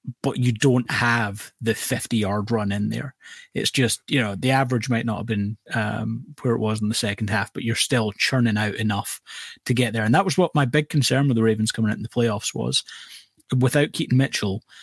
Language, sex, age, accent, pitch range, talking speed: English, male, 30-49, British, 110-125 Hz, 225 wpm